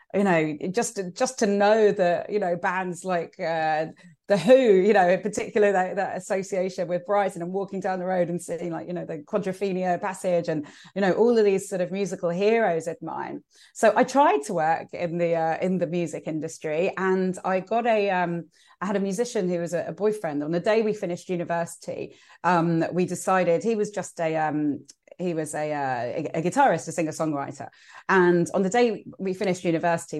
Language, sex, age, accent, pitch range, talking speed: English, female, 30-49, British, 170-215 Hz, 205 wpm